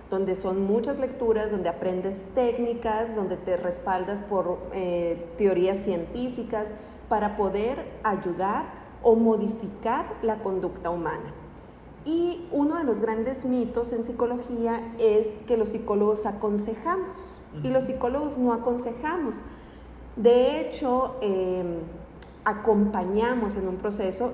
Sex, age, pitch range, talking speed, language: female, 40-59, 195-255 Hz, 115 wpm, Spanish